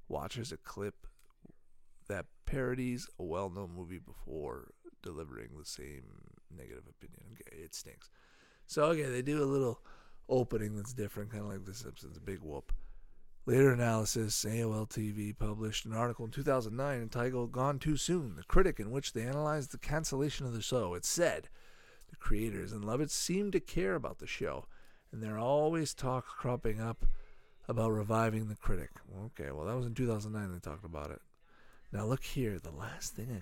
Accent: American